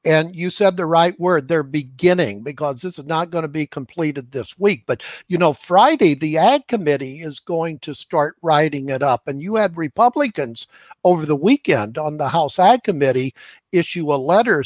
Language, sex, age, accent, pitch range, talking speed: English, male, 60-79, American, 150-185 Hz, 190 wpm